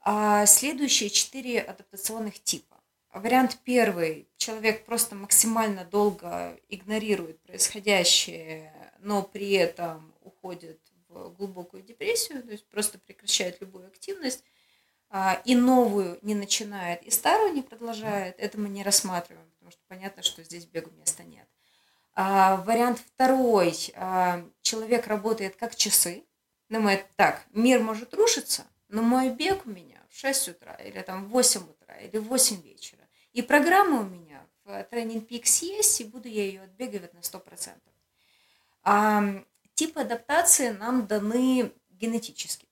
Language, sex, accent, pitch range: Russian, female, native, 190-245 Hz